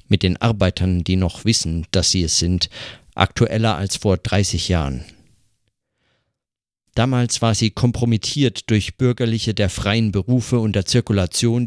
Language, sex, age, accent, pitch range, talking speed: German, male, 50-69, German, 100-115 Hz, 140 wpm